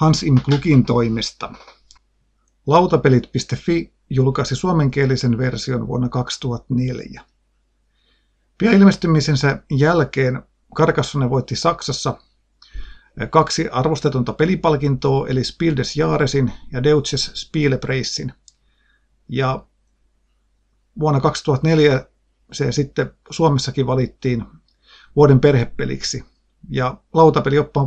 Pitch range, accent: 130-155 Hz, native